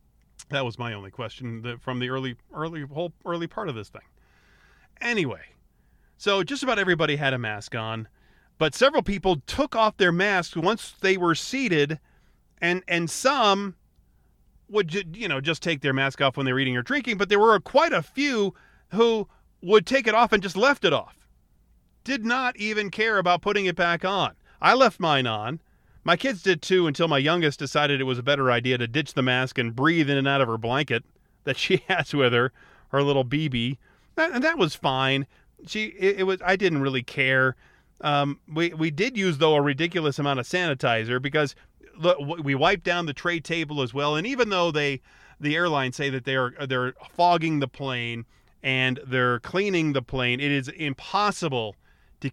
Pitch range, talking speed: 130-185 Hz, 190 wpm